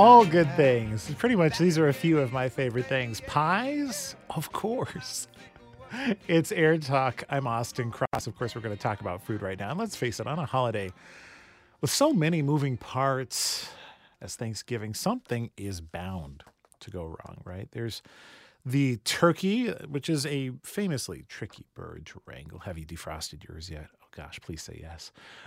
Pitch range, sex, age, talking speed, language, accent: 105-145 Hz, male, 40-59, 175 wpm, English, American